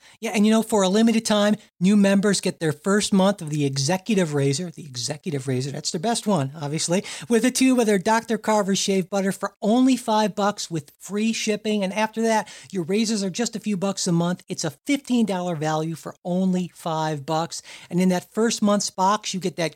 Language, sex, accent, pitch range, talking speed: English, male, American, 160-210 Hz, 215 wpm